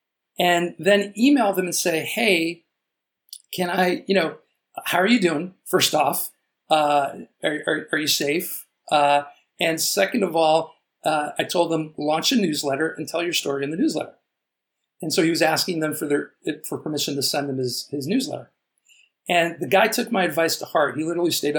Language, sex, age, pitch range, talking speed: English, male, 50-69, 145-185 Hz, 190 wpm